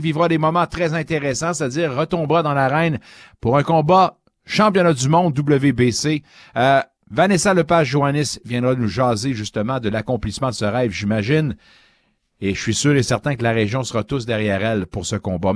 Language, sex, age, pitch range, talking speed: French, male, 60-79, 120-155 Hz, 175 wpm